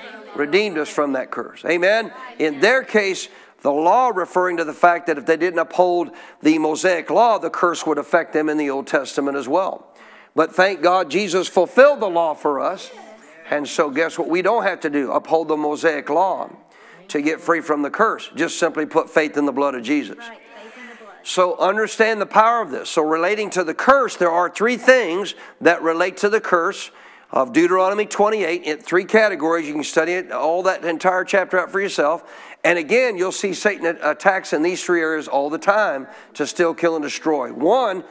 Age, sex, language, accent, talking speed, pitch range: 50-69, male, English, American, 200 wpm, 160-205 Hz